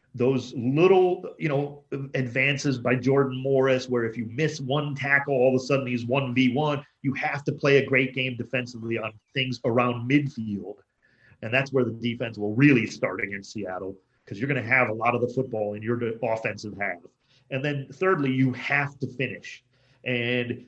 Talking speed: 185 wpm